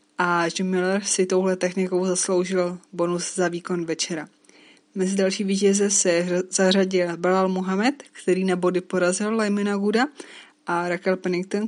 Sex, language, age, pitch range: female, Czech, 20-39, 180-200 Hz